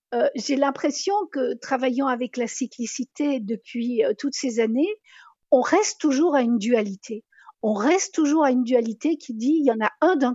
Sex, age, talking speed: female, 50-69, 190 wpm